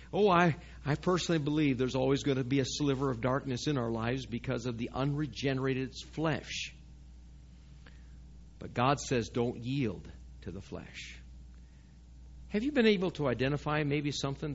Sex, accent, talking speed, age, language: male, American, 155 wpm, 50-69, English